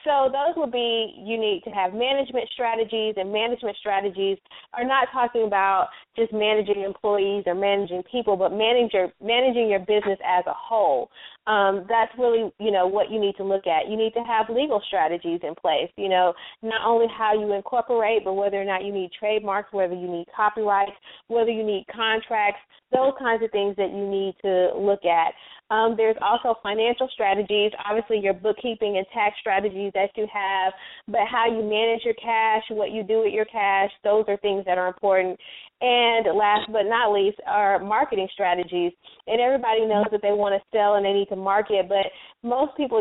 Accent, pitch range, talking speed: American, 195-225 Hz, 190 wpm